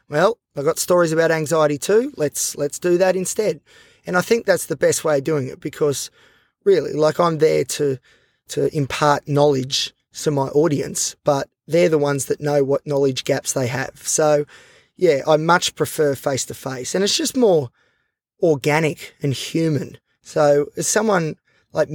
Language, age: English, 20-39